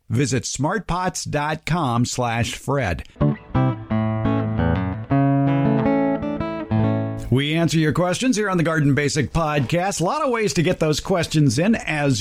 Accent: American